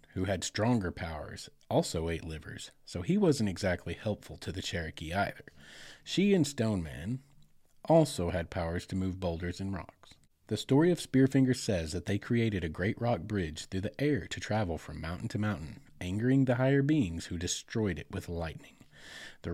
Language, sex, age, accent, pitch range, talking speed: English, male, 30-49, American, 85-115 Hz, 180 wpm